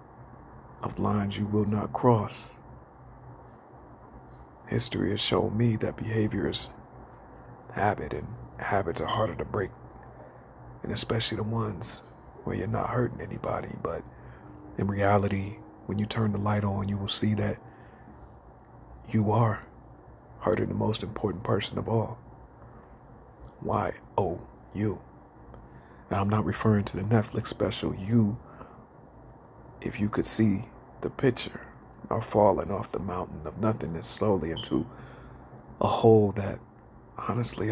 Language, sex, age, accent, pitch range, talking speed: English, male, 50-69, American, 100-115 Hz, 130 wpm